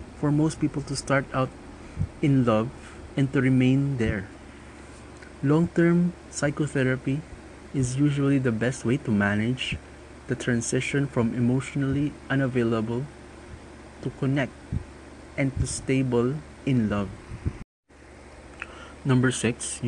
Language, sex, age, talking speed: Filipino, male, 20-39, 110 wpm